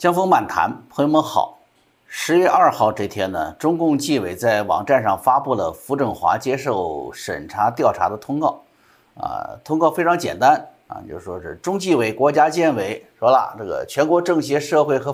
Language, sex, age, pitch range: Chinese, male, 50-69, 125-170 Hz